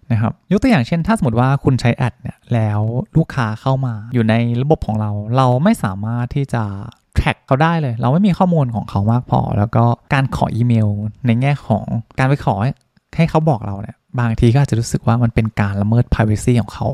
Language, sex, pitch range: Thai, male, 110-140 Hz